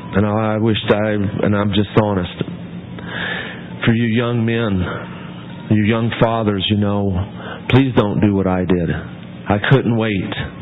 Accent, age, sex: American, 40-59, male